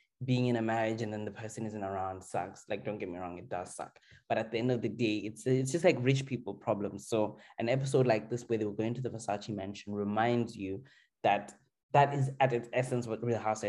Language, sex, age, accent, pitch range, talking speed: English, male, 20-39, South African, 110-135 Hz, 250 wpm